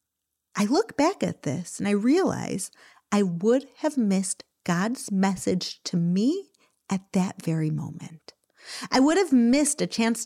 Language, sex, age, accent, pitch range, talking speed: English, female, 40-59, American, 195-285 Hz, 150 wpm